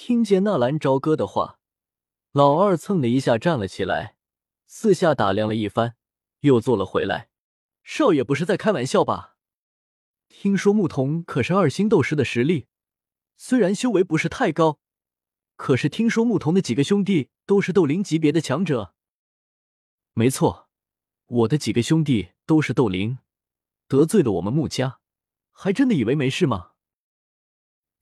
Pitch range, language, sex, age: 110-165 Hz, Chinese, male, 20-39